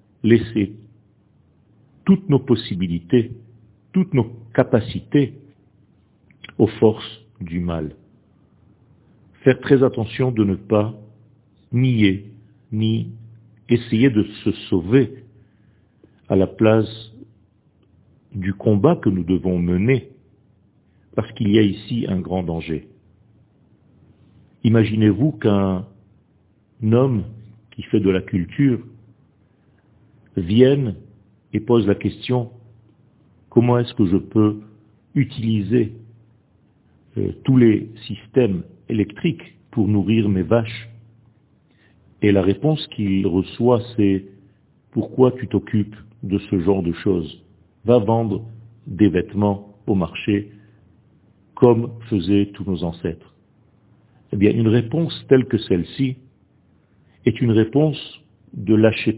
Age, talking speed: 50-69, 110 wpm